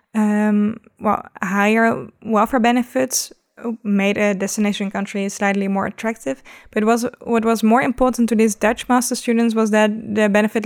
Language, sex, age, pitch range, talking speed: English, female, 10-29, 205-225 Hz, 150 wpm